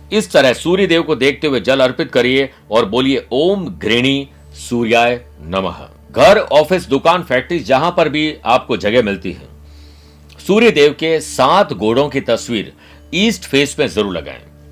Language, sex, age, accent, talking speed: Hindi, male, 60-79, native, 160 wpm